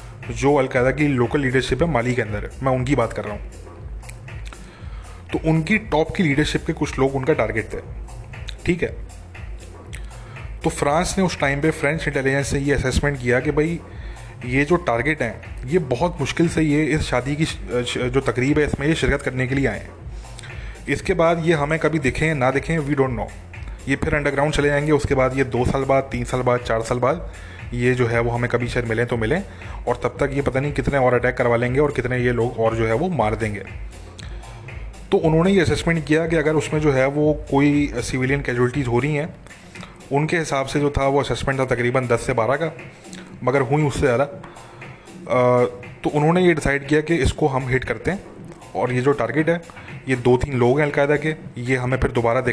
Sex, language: male, English